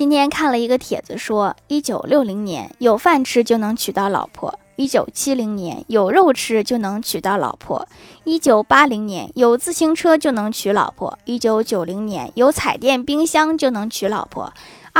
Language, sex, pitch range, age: Chinese, female, 215-295 Hz, 10-29